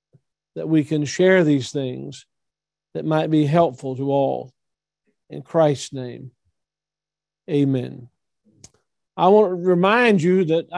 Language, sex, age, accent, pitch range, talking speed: English, male, 50-69, American, 145-185 Hz, 120 wpm